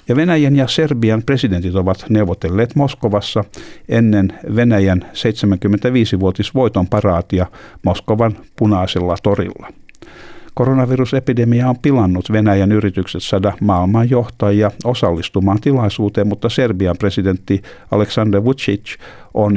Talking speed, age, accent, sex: 90 wpm, 60-79, native, male